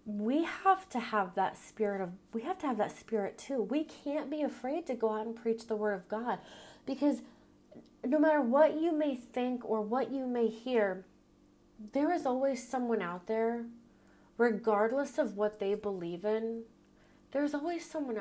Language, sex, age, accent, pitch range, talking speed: English, female, 30-49, American, 215-270 Hz, 180 wpm